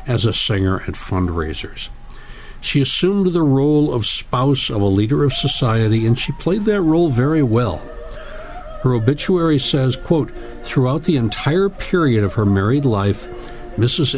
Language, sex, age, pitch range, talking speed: English, male, 60-79, 95-130 Hz, 150 wpm